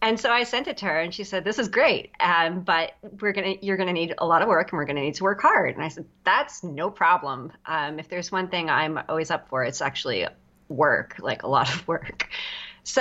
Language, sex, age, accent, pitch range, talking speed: English, female, 30-49, American, 160-215 Hz, 255 wpm